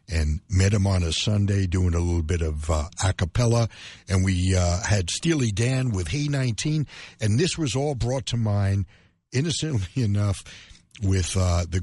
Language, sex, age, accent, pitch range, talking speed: English, male, 60-79, American, 85-110 Hz, 180 wpm